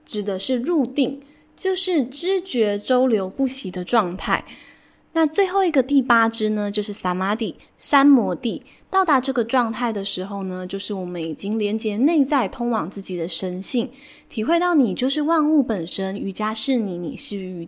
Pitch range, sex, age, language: 195-275 Hz, female, 10-29, Chinese